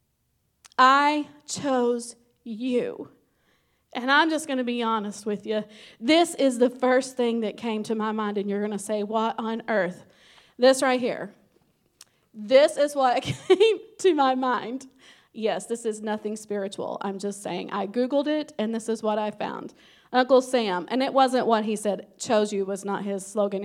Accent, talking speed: American, 180 wpm